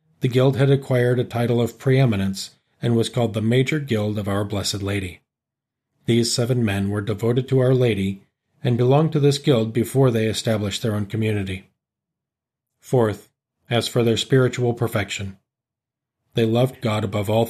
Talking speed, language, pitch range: 165 wpm, English, 110-130 Hz